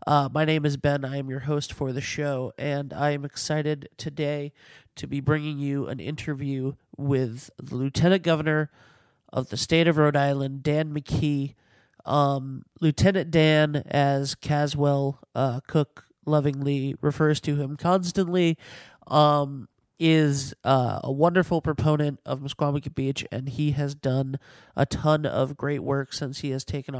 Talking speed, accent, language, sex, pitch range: 155 wpm, American, English, male, 135-150 Hz